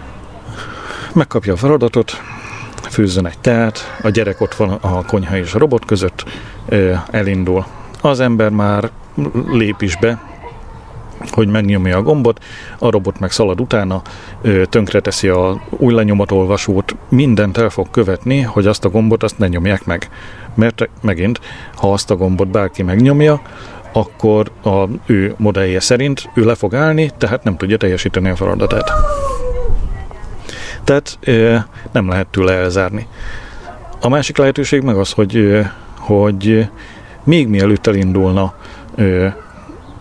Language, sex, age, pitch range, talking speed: Hungarian, male, 40-59, 95-115 Hz, 130 wpm